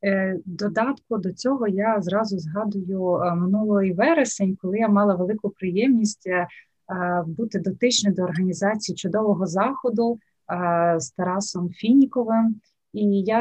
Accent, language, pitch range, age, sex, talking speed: native, Ukrainian, 185-215 Hz, 20-39, female, 105 wpm